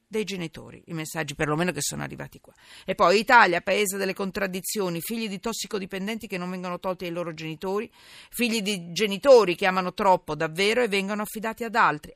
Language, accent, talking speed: Italian, native, 185 wpm